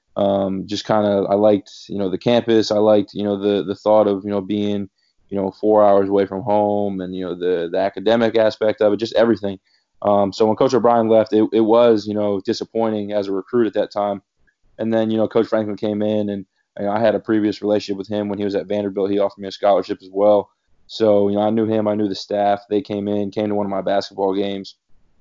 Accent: American